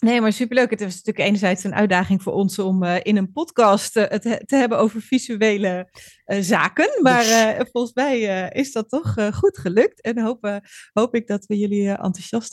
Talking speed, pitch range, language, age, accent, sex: 210 wpm, 180-230 Hz, Dutch, 30-49, Dutch, female